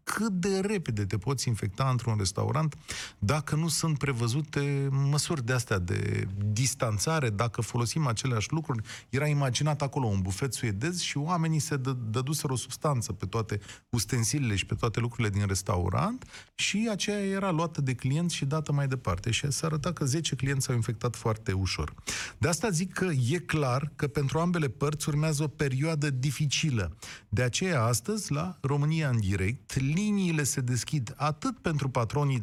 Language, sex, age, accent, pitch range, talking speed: Romanian, male, 30-49, native, 120-165 Hz, 165 wpm